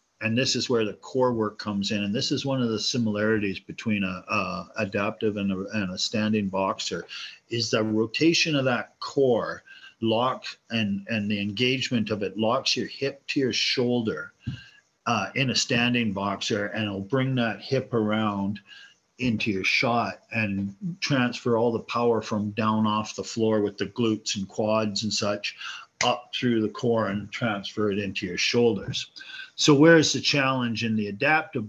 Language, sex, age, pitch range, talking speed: English, male, 50-69, 105-130 Hz, 170 wpm